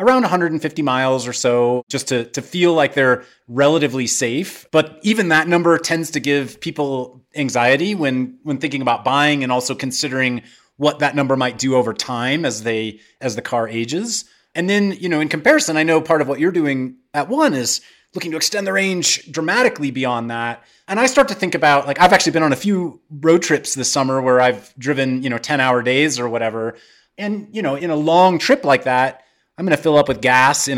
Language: English